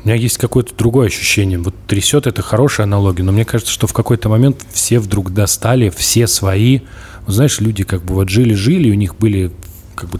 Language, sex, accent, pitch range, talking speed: Russian, male, native, 95-115 Hz, 205 wpm